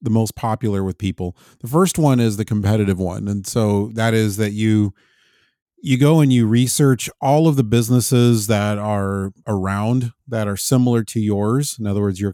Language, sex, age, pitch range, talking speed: English, male, 30-49, 100-125 Hz, 190 wpm